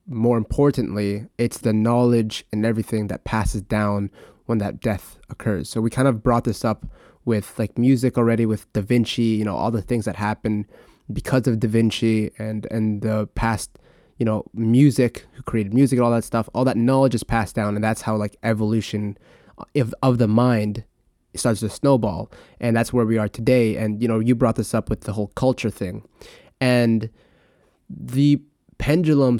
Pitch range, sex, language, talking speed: 110-130 Hz, male, English, 185 wpm